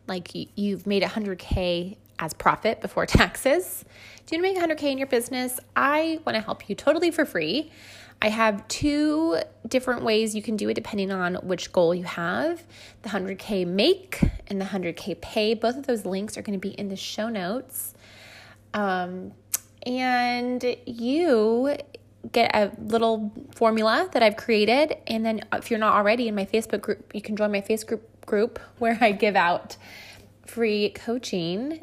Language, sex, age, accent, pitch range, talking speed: English, female, 20-39, American, 185-250 Hz, 170 wpm